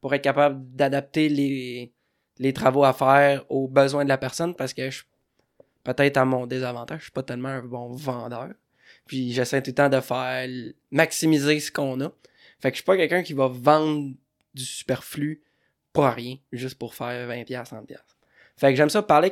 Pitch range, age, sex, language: 130-155 Hz, 20-39, male, French